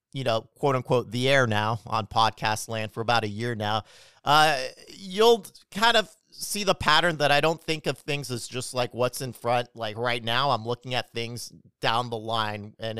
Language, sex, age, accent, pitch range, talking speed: English, male, 40-59, American, 110-140 Hz, 210 wpm